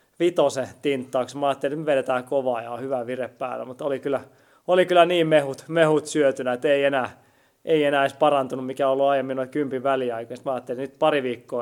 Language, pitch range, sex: Finnish, 125-160 Hz, male